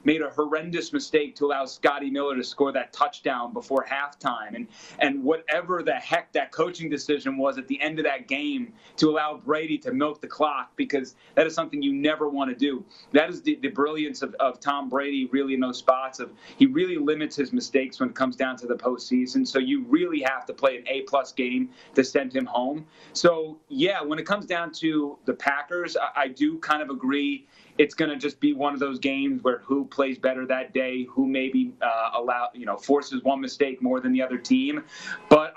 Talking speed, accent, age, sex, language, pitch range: 220 wpm, American, 30-49, male, English, 130-155 Hz